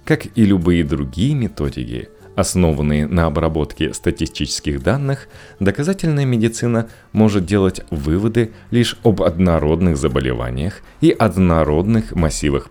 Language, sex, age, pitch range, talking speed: Russian, male, 30-49, 75-105 Hz, 105 wpm